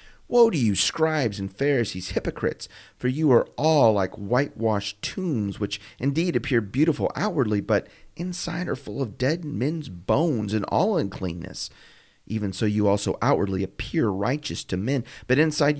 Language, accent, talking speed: English, American, 155 wpm